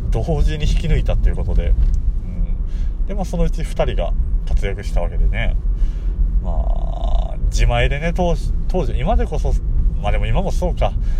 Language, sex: Japanese, male